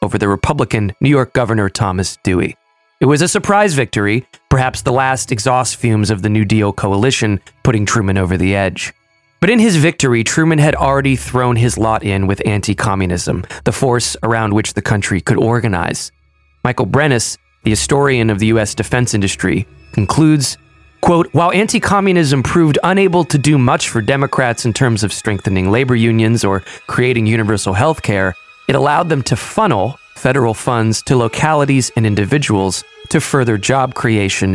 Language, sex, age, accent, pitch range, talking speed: English, male, 20-39, American, 105-135 Hz, 165 wpm